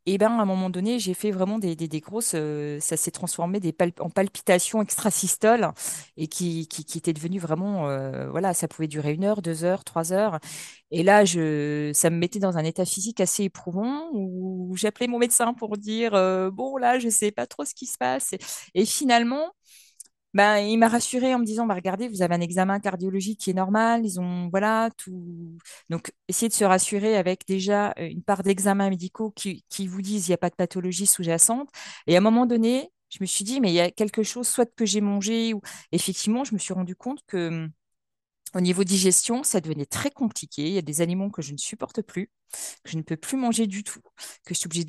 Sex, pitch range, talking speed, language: female, 175-220 Hz, 235 wpm, French